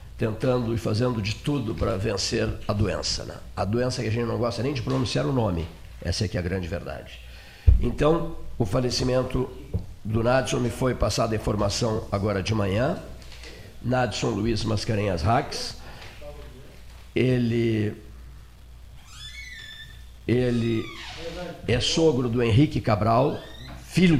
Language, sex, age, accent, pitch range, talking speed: Portuguese, male, 50-69, Brazilian, 110-140 Hz, 130 wpm